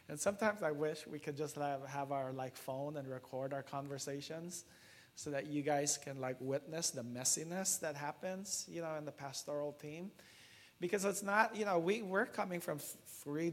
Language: English